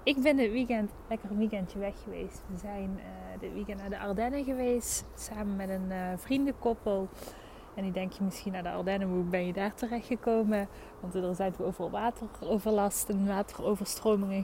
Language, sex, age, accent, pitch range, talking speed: Dutch, female, 20-39, Dutch, 195-220 Hz, 185 wpm